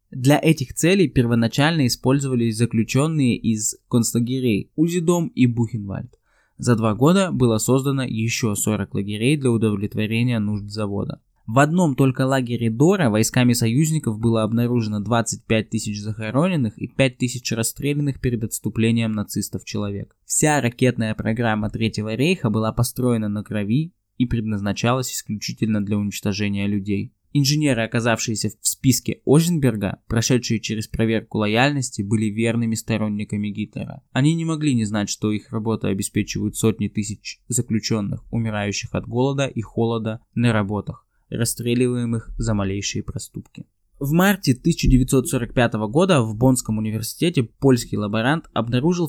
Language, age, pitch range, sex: Russian, 20-39, 110-130 Hz, male